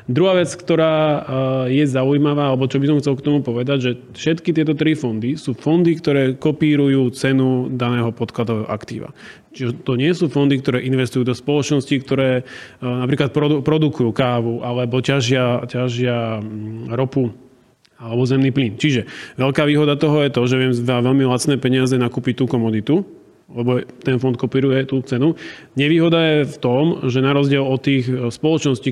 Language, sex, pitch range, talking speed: Slovak, male, 120-140 Hz, 160 wpm